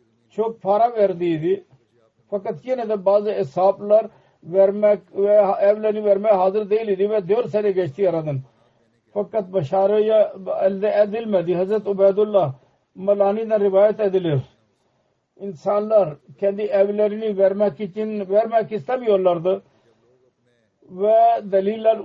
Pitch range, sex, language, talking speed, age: 185-215 Hz, male, Turkish, 100 wpm, 50-69